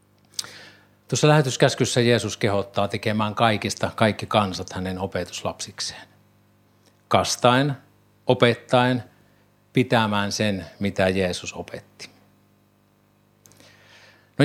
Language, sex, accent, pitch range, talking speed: Finnish, male, native, 100-125 Hz, 75 wpm